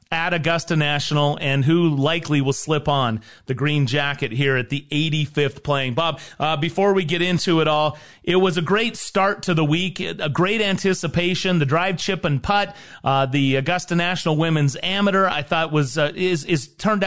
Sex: male